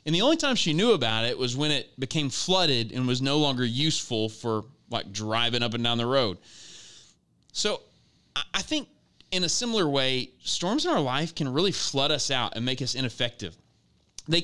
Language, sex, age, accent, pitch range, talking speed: English, male, 30-49, American, 120-170 Hz, 195 wpm